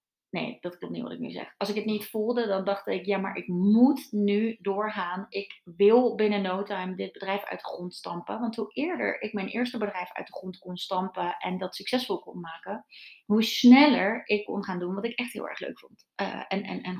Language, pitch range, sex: Dutch, 185-220 Hz, female